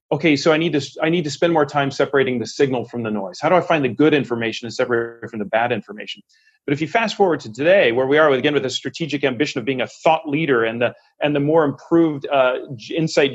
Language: English